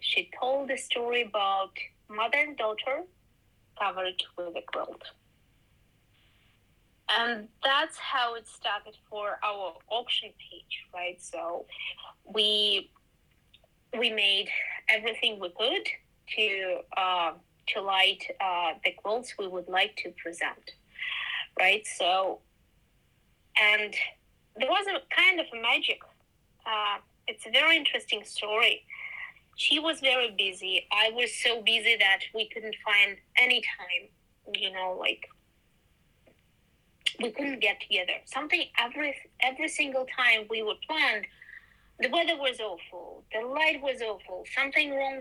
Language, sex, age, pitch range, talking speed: English, female, 20-39, 200-270 Hz, 125 wpm